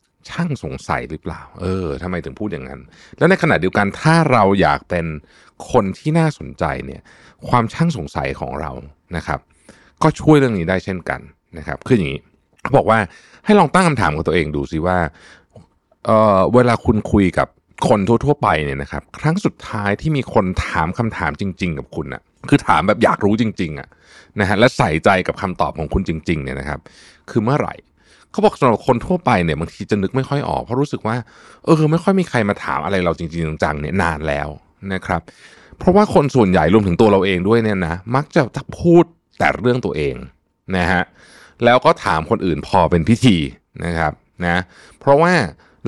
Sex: male